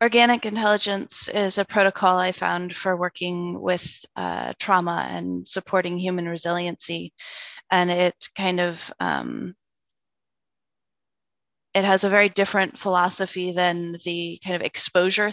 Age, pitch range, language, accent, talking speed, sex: 20-39, 175-200 Hz, English, American, 125 wpm, female